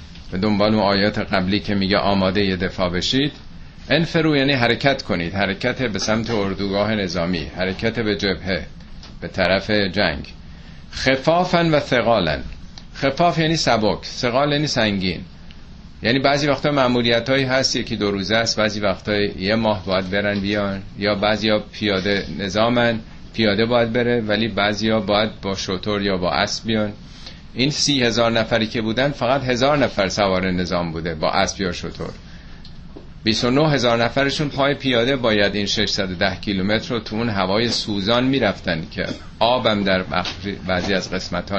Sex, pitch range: male, 95-125 Hz